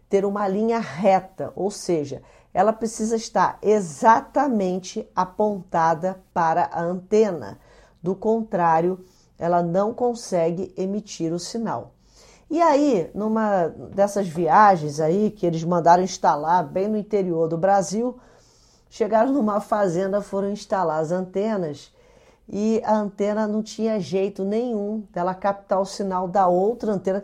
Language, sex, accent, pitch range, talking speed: Portuguese, female, Brazilian, 185-230 Hz, 130 wpm